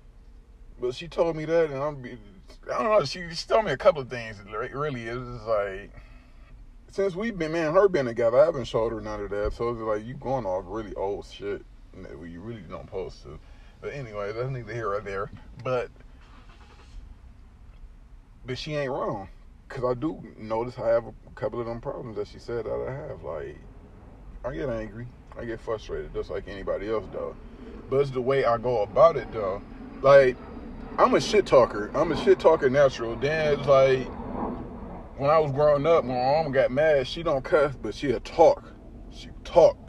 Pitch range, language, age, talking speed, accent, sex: 115-145 Hz, English, 20-39, 205 wpm, American, male